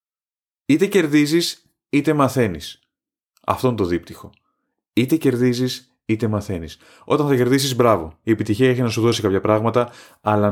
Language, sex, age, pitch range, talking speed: Greek, male, 30-49, 100-125 Hz, 145 wpm